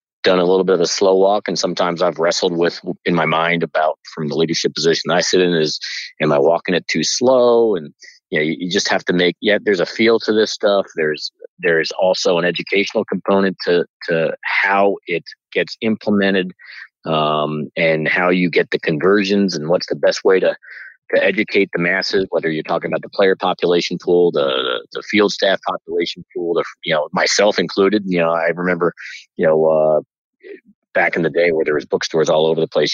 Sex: male